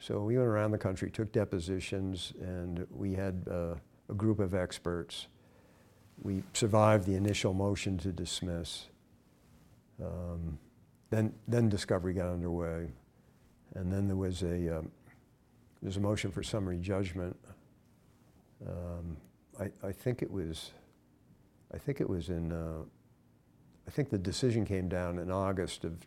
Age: 60-79